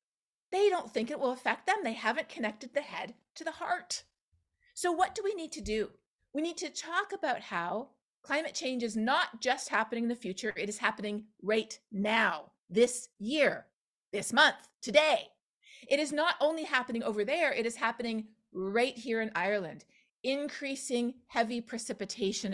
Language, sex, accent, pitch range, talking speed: English, female, American, 220-275 Hz, 170 wpm